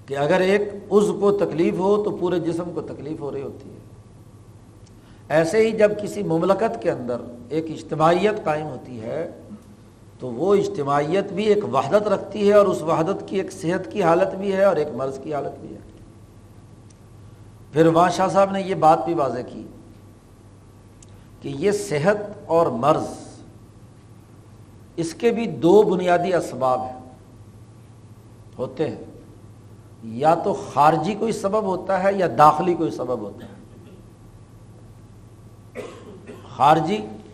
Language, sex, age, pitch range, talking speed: Urdu, male, 60-79, 110-185 Hz, 145 wpm